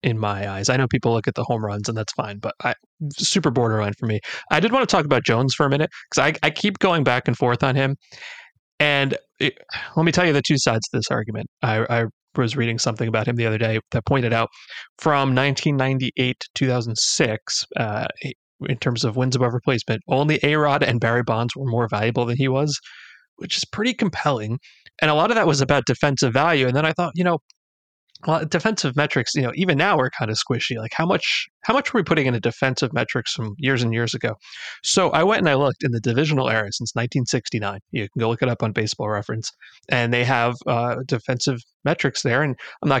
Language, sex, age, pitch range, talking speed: English, male, 30-49, 120-150 Hz, 230 wpm